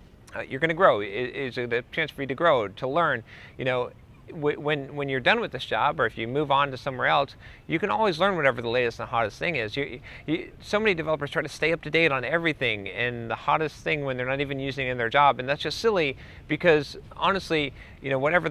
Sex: male